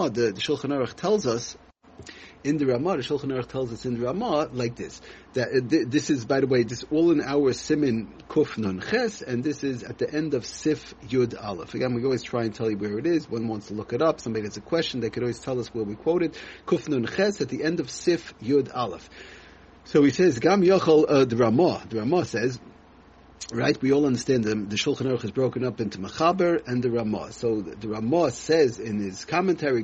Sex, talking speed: male, 230 wpm